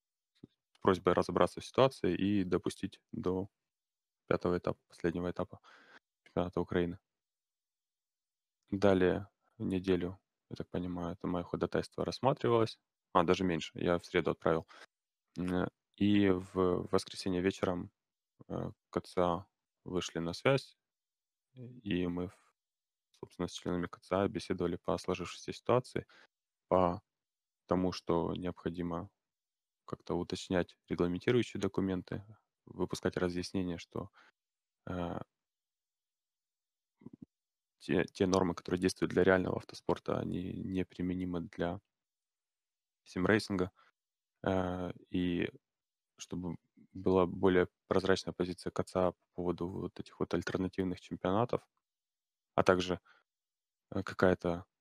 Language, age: Russian, 20-39